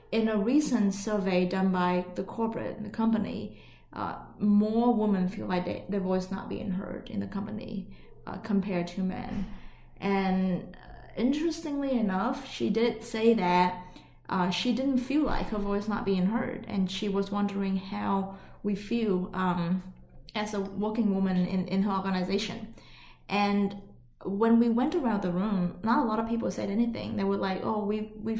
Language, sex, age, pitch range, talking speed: English, female, 20-39, 195-230 Hz, 175 wpm